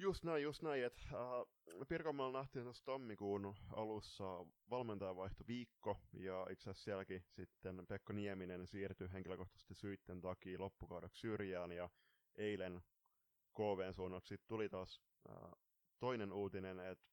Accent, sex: native, male